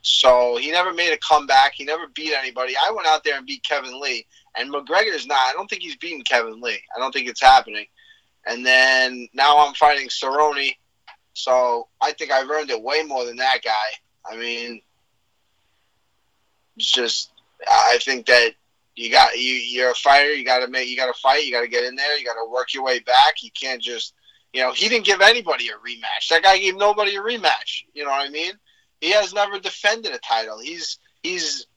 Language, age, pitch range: English, 20-39, 130-195 Hz